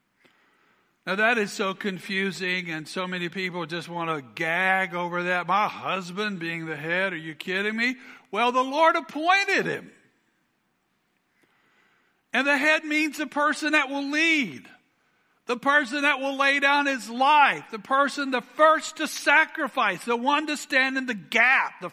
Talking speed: 165 wpm